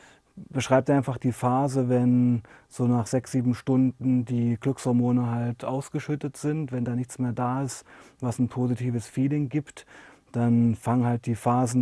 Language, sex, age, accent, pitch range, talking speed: German, male, 30-49, German, 125-145 Hz, 155 wpm